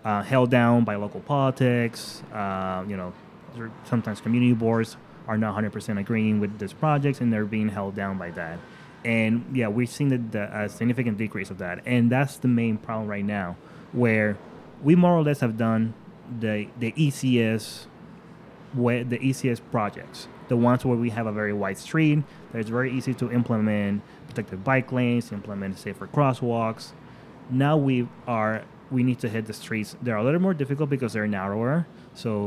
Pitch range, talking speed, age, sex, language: 105-125 Hz, 185 wpm, 20-39, male, English